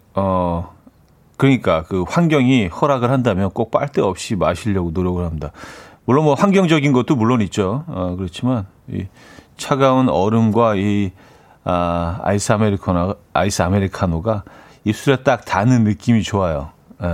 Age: 40-59